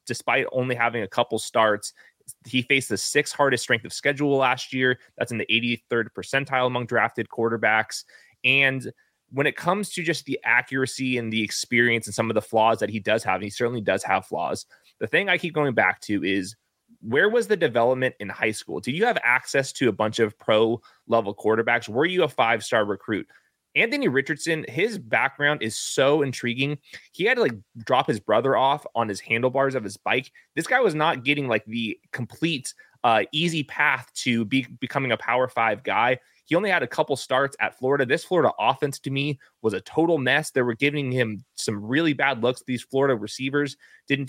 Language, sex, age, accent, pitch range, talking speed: English, male, 20-39, American, 115-145 Hz, 200 wpm